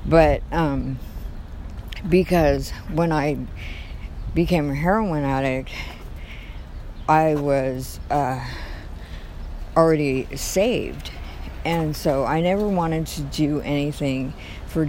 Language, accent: English, American